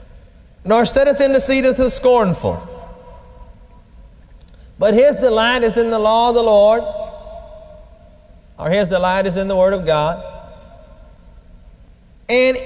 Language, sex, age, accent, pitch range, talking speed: English, male, 40-59, American, 160-235 Hz, 135 wpm